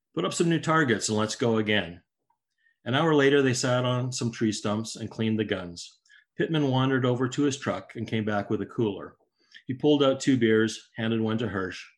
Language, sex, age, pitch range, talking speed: English, male, 40-59, 110-150 Hz, 215 wpm